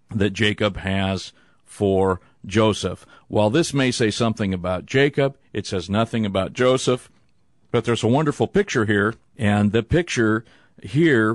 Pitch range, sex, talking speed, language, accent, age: 100-135 Hz, male, 145 wpm, English, American, 50-69